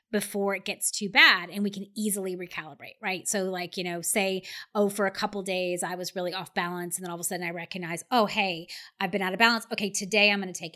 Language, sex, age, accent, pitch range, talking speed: English, female, 30-49, American, 180-220 Hz, 260 wpm